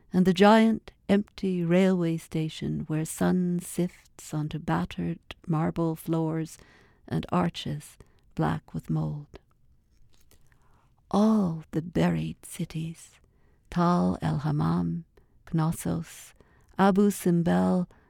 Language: English